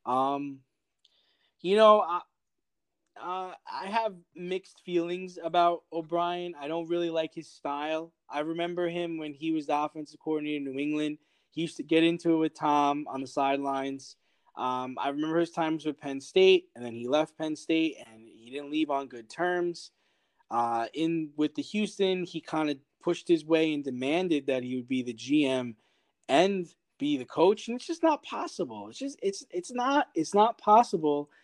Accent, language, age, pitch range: American, English, 20-39, 145-190 Hz